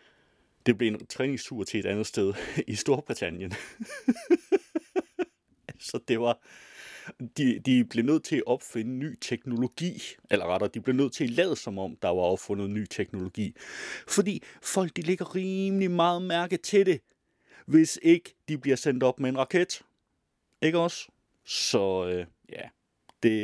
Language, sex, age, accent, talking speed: Danish, male, 30-49, native, 155 wpm